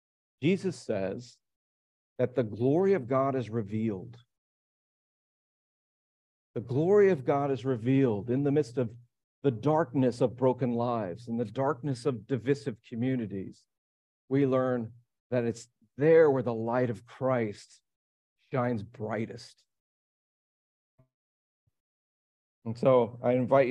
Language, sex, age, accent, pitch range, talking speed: English, male, 50-69, American, 115-140 Hz, 115 wpm